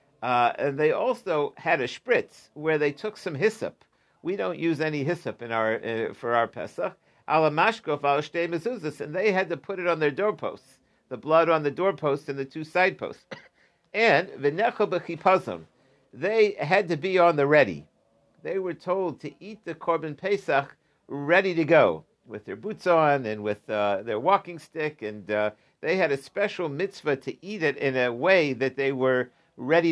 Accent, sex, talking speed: American, male, 175 wpm